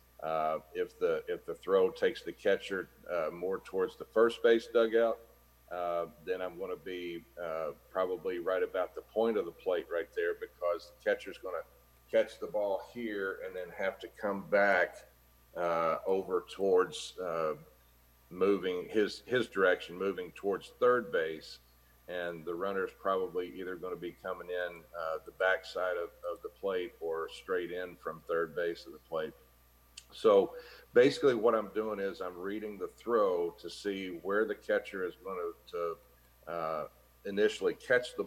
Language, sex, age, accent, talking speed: English, male, 50-69, American, 170 wpm